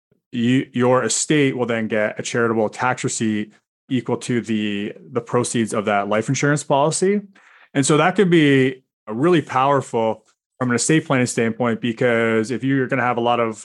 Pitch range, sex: 110-135 Hz, male